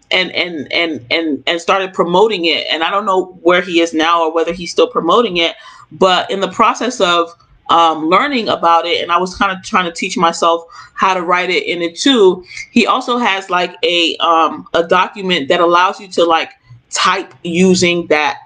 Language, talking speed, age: English, 205 wpm, 30-49